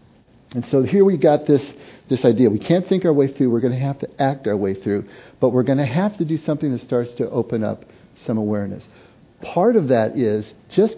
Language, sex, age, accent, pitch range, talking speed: English, male, 50-69, American, 120-155 Hz, 235 wpm